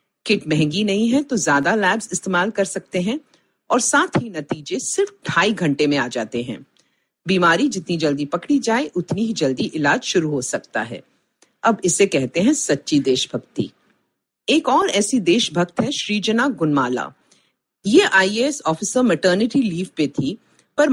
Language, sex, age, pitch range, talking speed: Hindi, female, 50-69, 155-250 Hz, 160 wpm